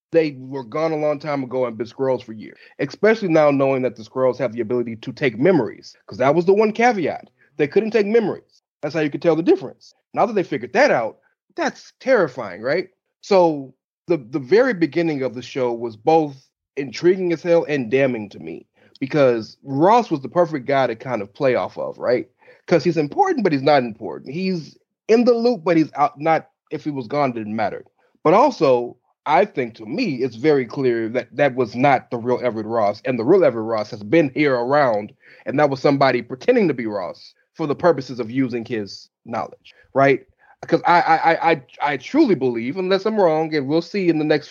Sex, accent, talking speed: male, American, 215 wpm